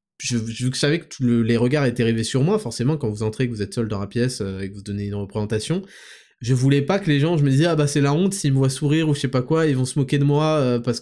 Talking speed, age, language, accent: 330 wpm, 20-39, French, French